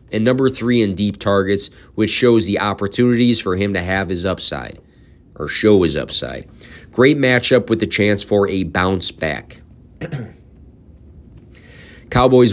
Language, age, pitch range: English, 30-49, 95-110 Hz